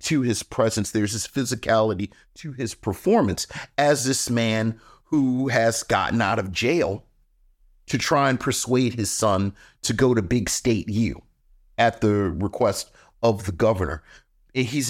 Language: English